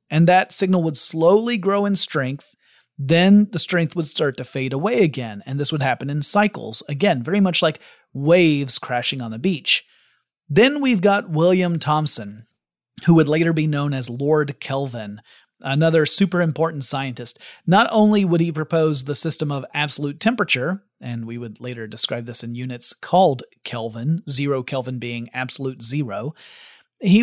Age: 30-49